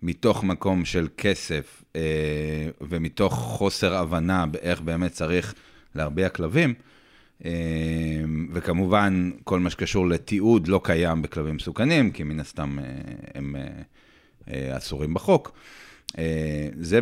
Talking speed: 100 wpm